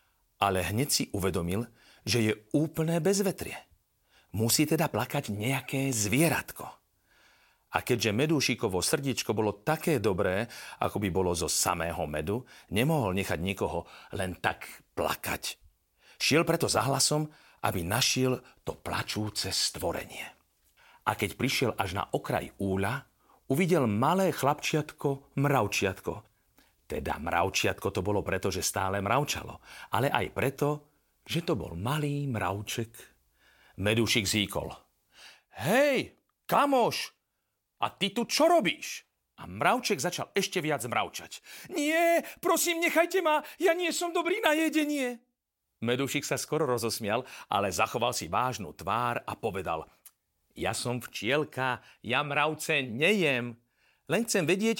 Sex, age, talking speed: male, 40-59, 125 wpm